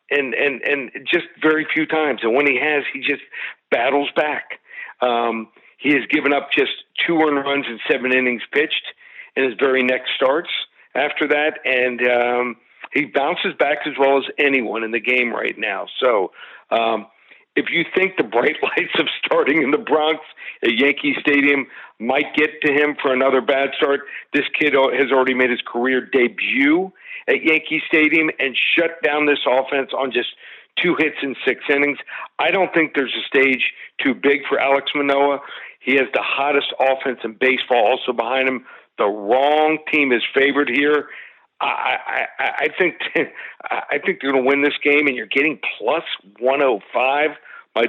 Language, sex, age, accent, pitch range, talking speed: English, male, 50-69, American, 125-155 Hz, 175 wpm